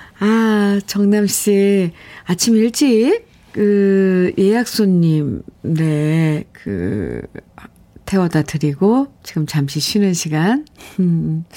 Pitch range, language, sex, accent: 170-225 Hz, Korean, female, native